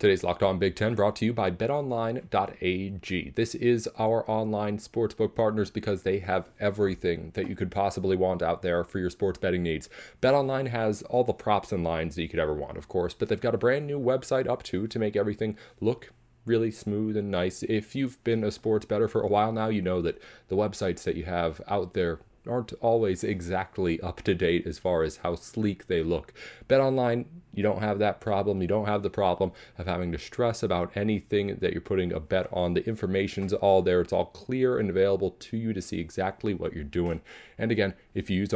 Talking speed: 220 wpm